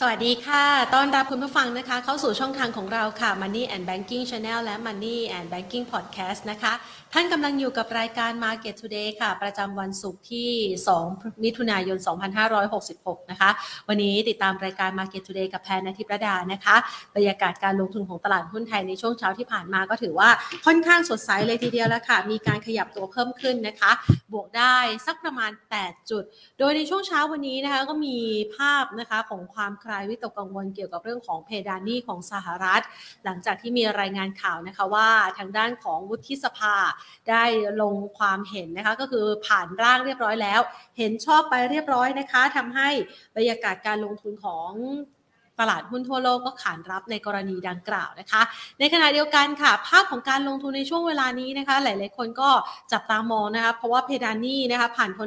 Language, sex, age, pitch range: Thai, female, 30-49, 200-255 Hz